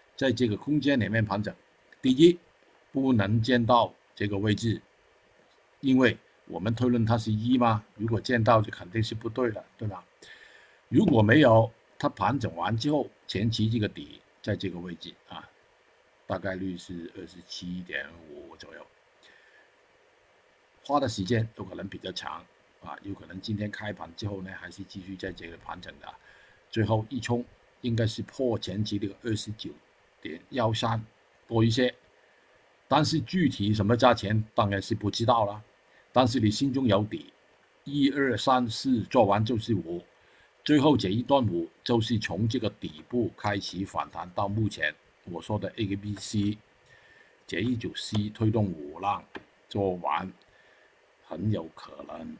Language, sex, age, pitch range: Chinese, male, 50-69, 100-125 Hz